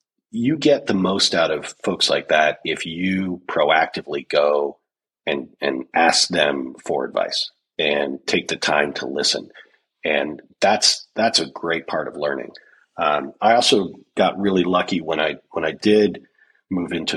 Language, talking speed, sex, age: English, 160 wpm, male, 40-59